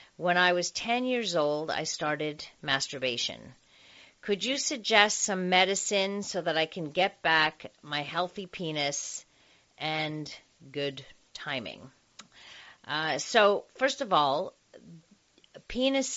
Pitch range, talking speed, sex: 150-200 Hz, 120 wpm, female